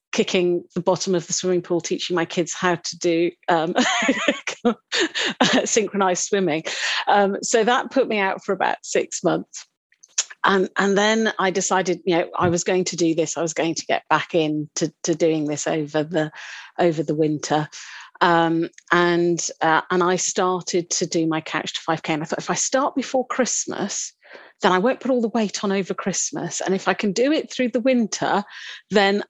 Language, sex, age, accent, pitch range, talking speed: English, female, 40-59, British, 175-215 Hz, 195 wpm